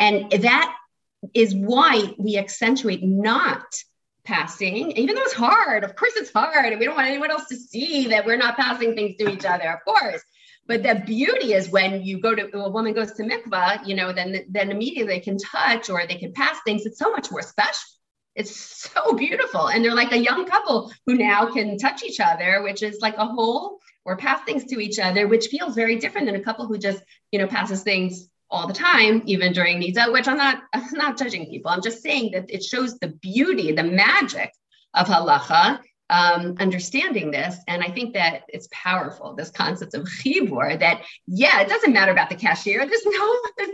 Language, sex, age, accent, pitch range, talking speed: English, female, 30-49, American, 195-275 Hz, 210 wpm